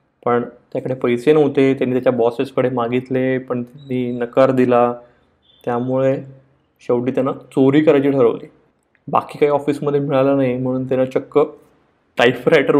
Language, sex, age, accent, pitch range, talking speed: Marathi, male, 20-39, native, 125-145 Hz, 125 wpm